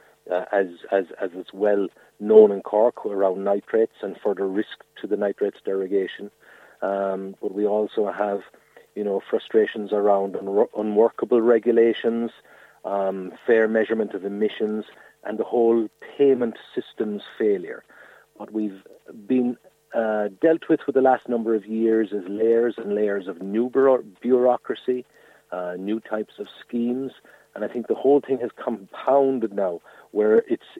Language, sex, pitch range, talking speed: English, male, 100-125 Hz, 150 wpm